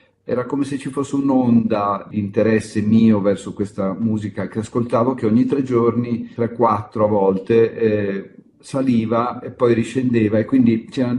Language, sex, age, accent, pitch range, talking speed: Italian, male, 50-69, native, 100-120 Hz, 165 wpm